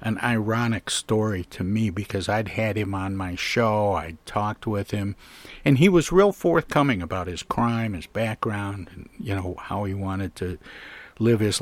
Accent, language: American, English